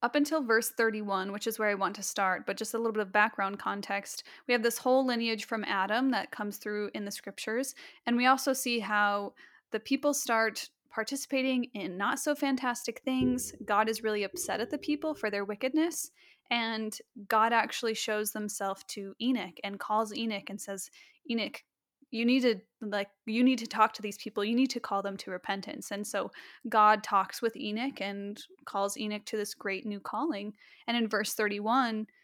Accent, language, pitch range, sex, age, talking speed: American, English, 205-250 Hz, female, 10-29, 190 wpm